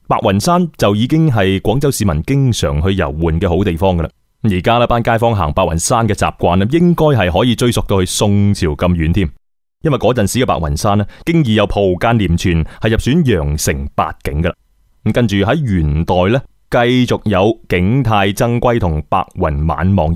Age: 20-39